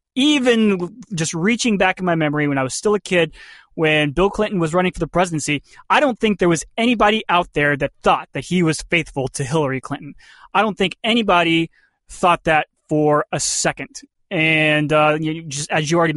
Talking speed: 200 wpm